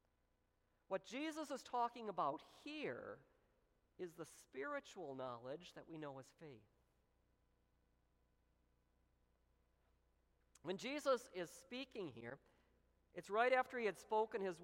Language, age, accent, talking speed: English, 50-69, American, 110 wpm